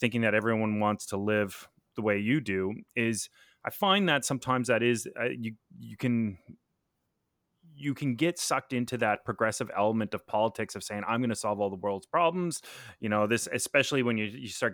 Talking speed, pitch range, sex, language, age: 185 wpm, 100-125 Hz, male, English, 30-49